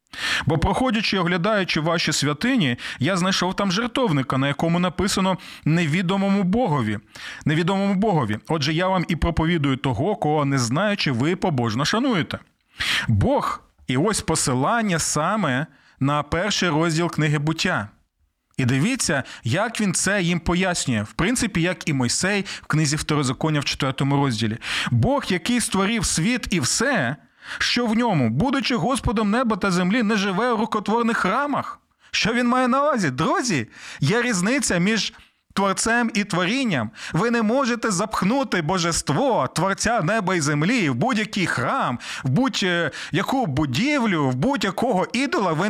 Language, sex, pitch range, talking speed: Ukrainian, male, 155-230 Hz, 140 wpm